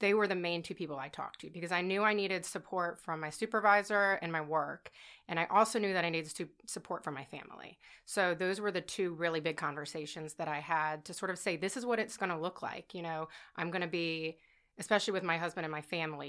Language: English